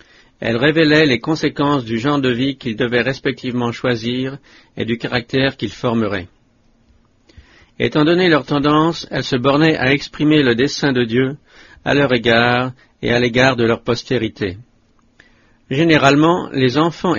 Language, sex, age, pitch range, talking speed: English, male, 50-69, 120-145 Hz, 145 wpm